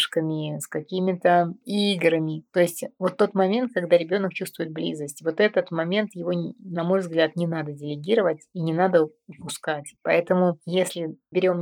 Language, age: Russian, 30-49